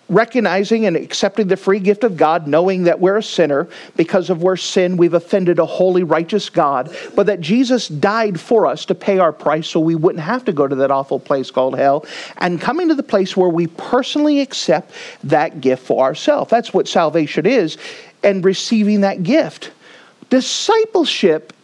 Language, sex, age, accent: English, male, 40-59, American